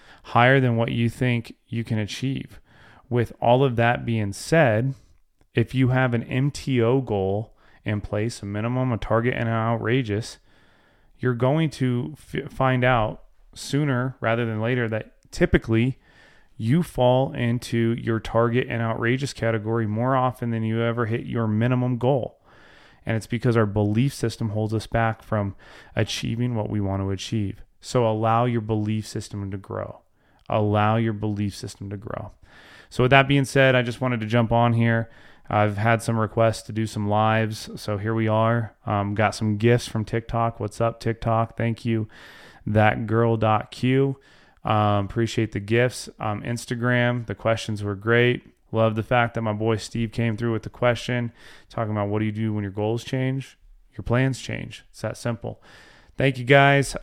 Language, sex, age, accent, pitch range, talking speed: English, male, 30-49, American, 110-125 Hz, 175 wpm